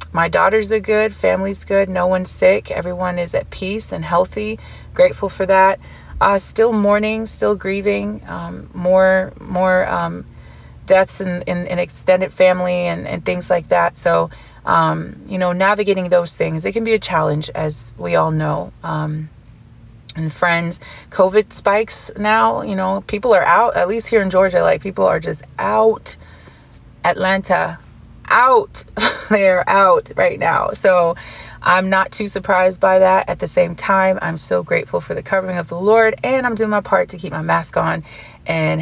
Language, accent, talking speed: English, American, 175 wpm